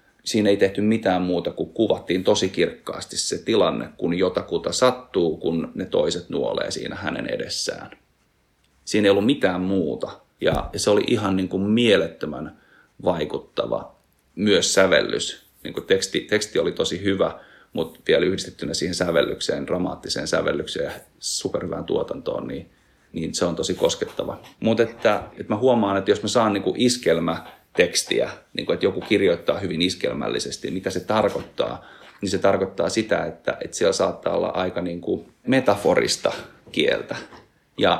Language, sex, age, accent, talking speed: Finnish, male, 30-49, native, 150 wpm